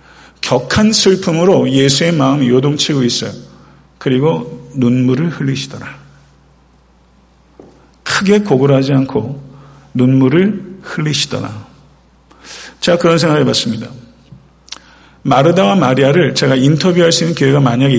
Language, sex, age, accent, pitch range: Korean, male, 50-69, native, 130-155 Hz